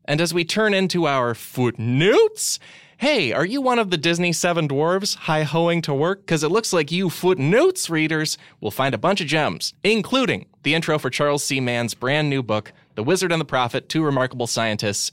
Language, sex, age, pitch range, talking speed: English, male, 20-39, 115-170 Hz, 200 wpm